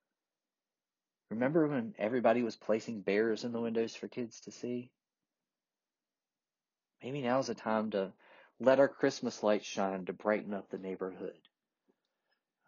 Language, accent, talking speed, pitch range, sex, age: English, American, 135 wpm, 100-125 Hz, male, 30-49